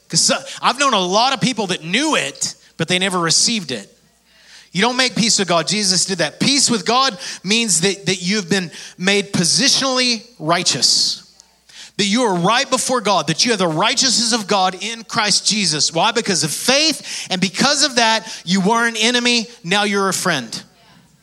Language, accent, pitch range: English, American, 165-220 Hz